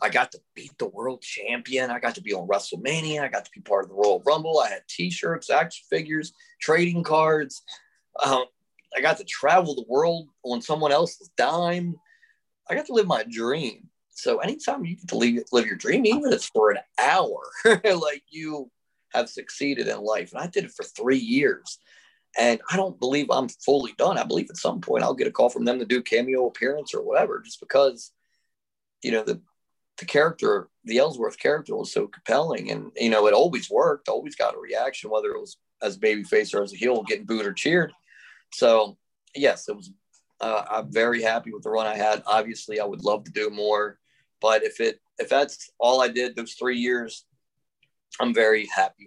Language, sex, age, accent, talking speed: English, male, 30-49, American, 205 wpm